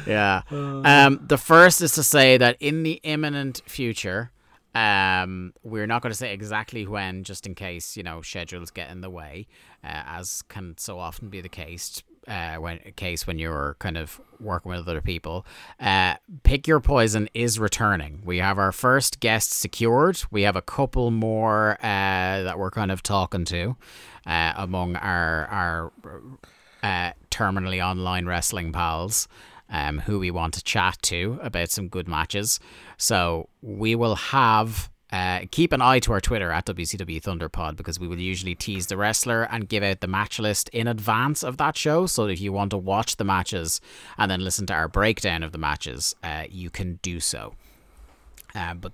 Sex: male